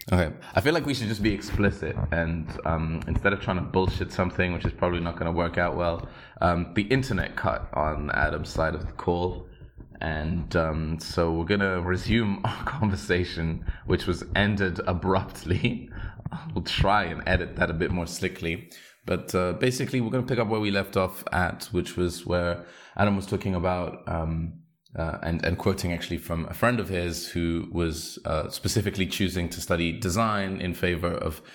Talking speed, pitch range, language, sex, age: 185 wpm, 85-100 Hz, English, male, 20-39